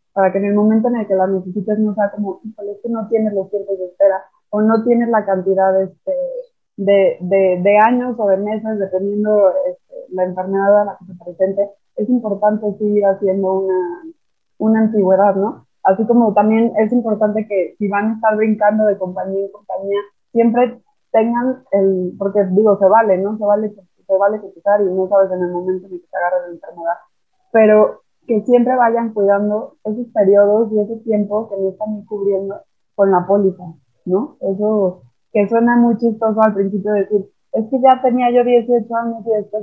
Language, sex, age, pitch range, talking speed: Spanish, female, 20-39, 195-225 Hz, 195 wpm